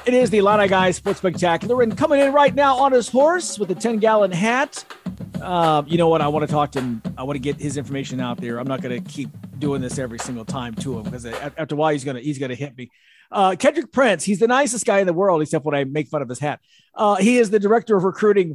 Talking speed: 280 wpm